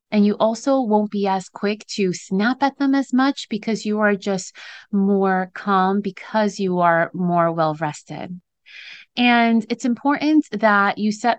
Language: English